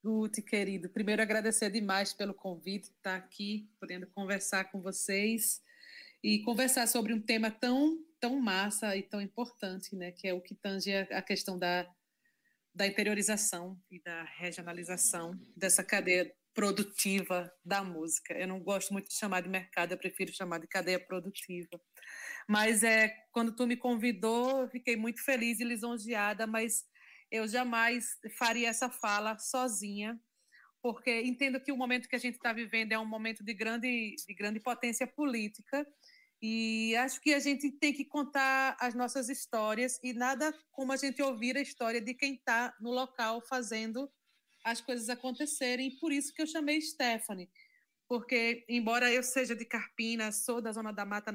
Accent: Brazilian